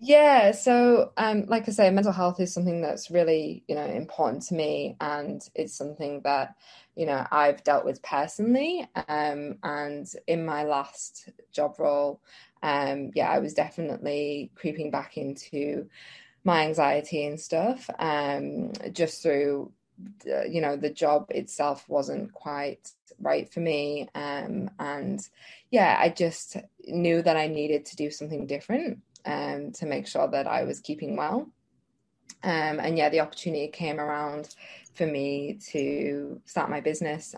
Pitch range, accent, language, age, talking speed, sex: 145-195 Hz, British, English, 20-39, 150 wpm, female